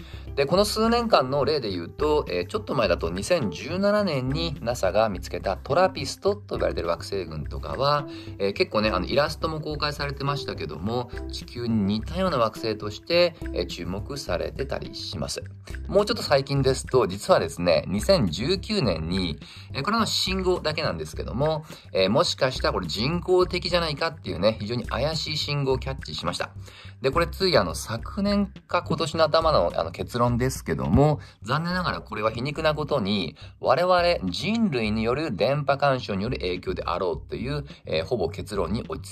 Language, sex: Japanese, male